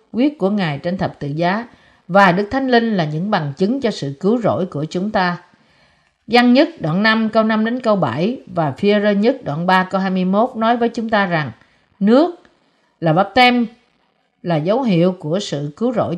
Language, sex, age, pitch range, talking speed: Vietnamese, female, 50-69, 165-235 Hz, 200 wpm